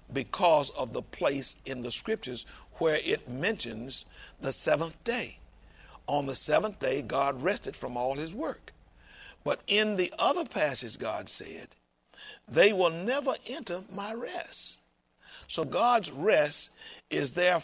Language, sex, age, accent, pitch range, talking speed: English, male, 60-79, American, 140-230 Hz, 140 wpm